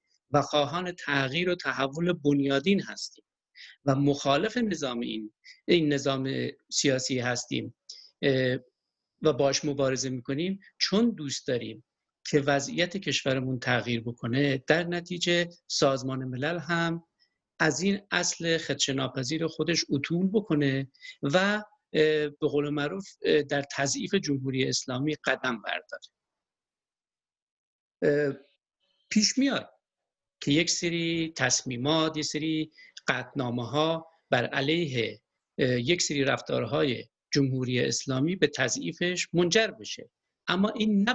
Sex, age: male, 50-69